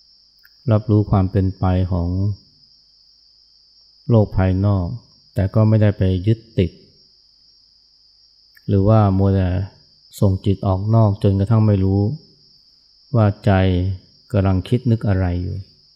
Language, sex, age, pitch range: Thai, male, 20-39, 90-105 Hz